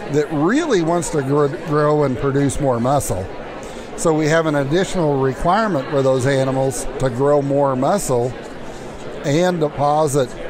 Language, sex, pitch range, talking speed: English, male, 135-160 Hz, 135 wpm